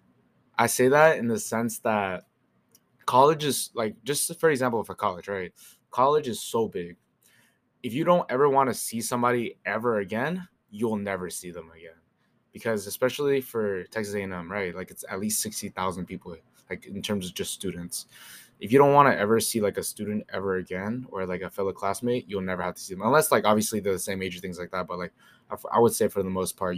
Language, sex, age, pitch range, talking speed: English, male, 20-39, 90-120 Hz, 220 wpm